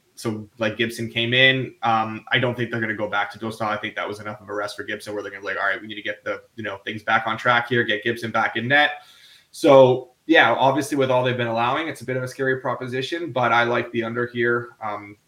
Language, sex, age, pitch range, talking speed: English, male, 20-39, 110-125 Hz, 285 wpm